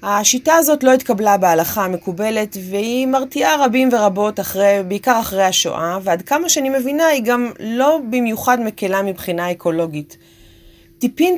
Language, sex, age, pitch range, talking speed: Hebrew, female, 30-49, 175-250 Hz, 135 wpm